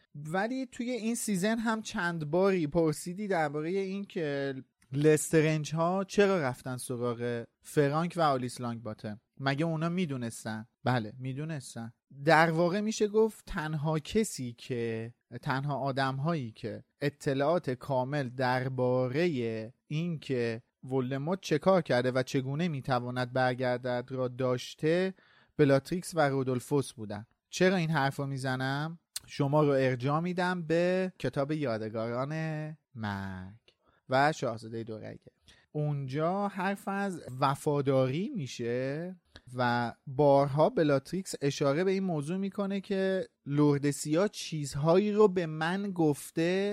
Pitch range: 125-175 Hz